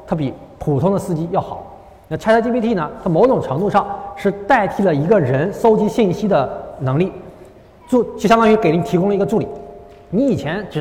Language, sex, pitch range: Chinese, male, 160-220 Hz